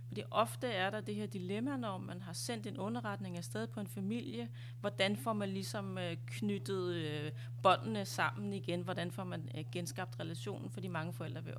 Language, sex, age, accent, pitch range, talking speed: Danish, female, 30-49, native, 115-155 Hz, 175 wpm